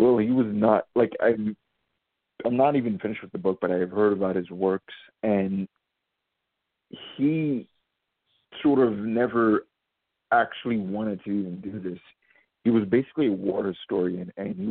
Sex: male